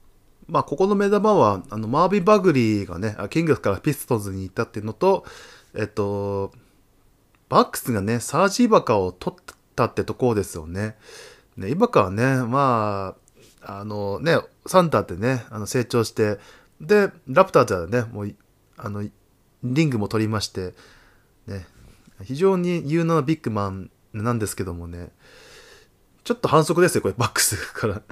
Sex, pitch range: male, 105-160 Hz